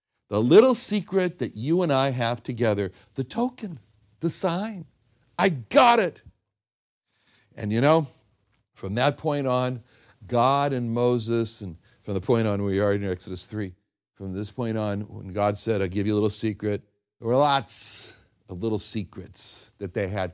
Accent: American